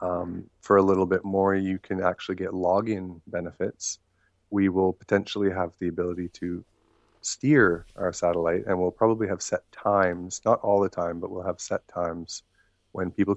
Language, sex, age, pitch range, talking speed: English, male, 30-49, 90-100 Hz, 175 wpm